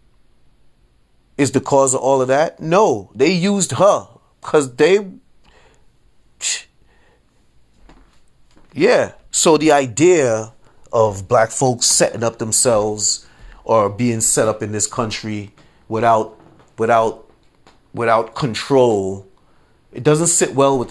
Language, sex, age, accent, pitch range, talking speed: English, male, 30-49, American, 110-145 Hz, 110 wpm